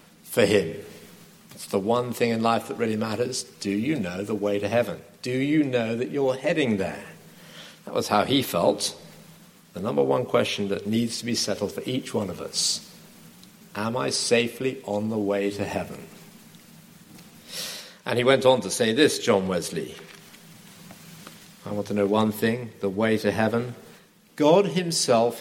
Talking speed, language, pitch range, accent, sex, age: 170 wpm, English, 105-150 Hz, British, male, 50-69